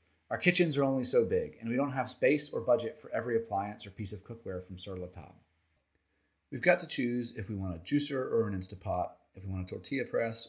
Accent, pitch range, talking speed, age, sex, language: American, 90-130 Hz, 240 wpm, 30-49, male, English